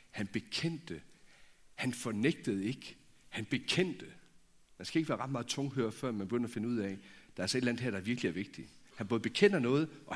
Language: Danish